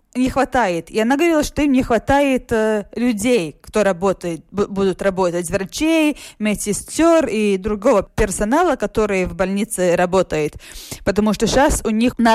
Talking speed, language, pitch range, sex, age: 150 wpm, Russian, 195-250 Hz, female, 20-39